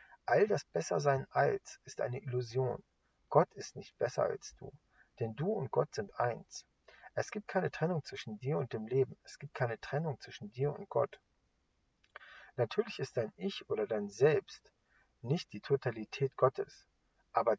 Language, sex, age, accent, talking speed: English, male, 50-69, German, 165 wpm